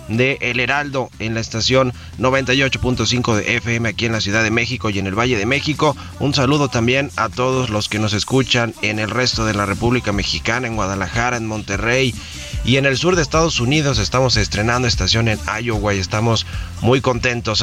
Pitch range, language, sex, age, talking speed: 100-125 Hz, Spanish, male, 30-49, 195 wpm